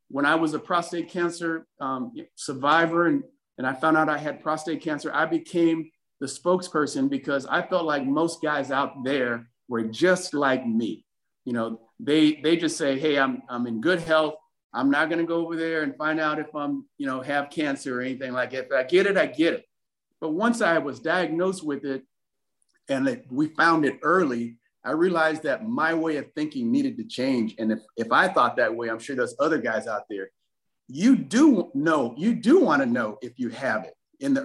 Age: 50-69